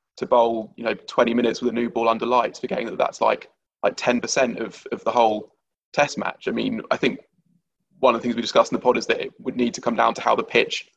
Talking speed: 270 wpm